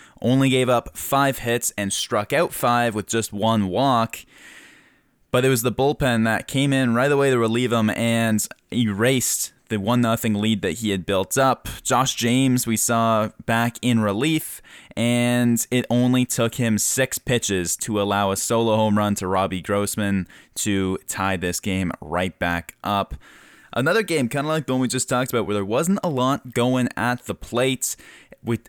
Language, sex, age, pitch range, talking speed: English, male, 10-29, 110-130 Hz, 180 wpm